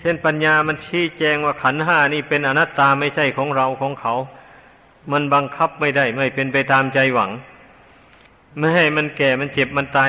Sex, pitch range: male, 135-155 Hz